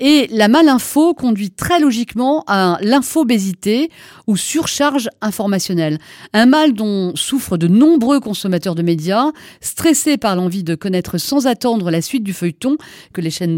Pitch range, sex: 185-265 Hz, female